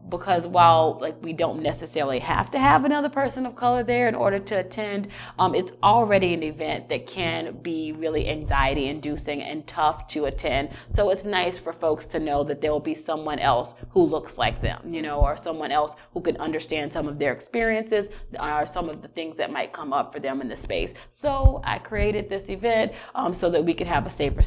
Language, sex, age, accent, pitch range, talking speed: English, female, 30-49, American, 155-195 Hz, 215 wpm